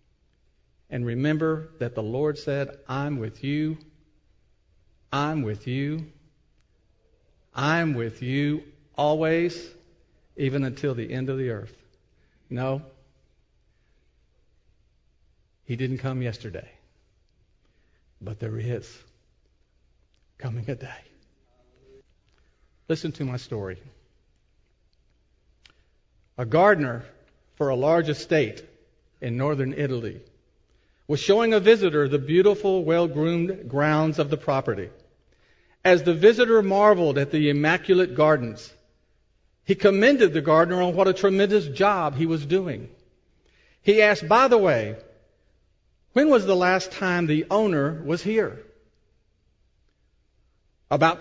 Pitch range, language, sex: 120-175 Hz, English, male